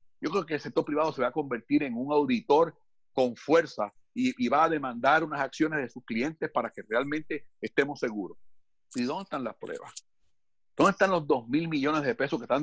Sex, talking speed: male, 210 wpm